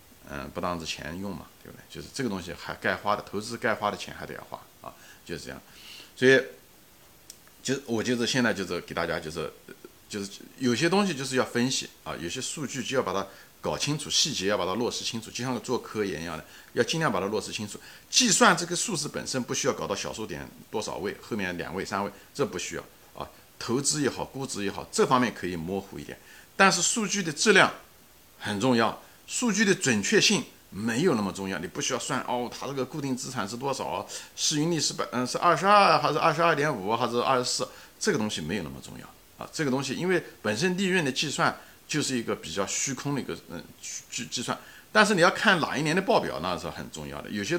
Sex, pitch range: male, 110-170 Hz